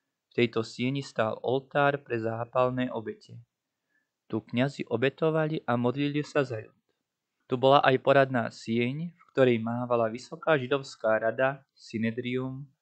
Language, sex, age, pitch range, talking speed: Slovak, male, 20-39, 120-145 Hz, 130 wpm